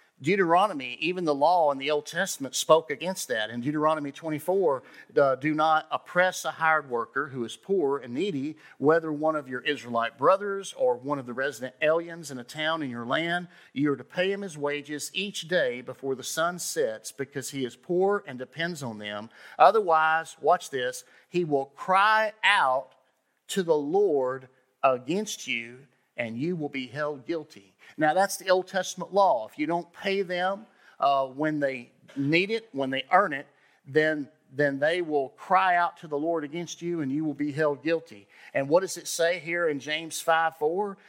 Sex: male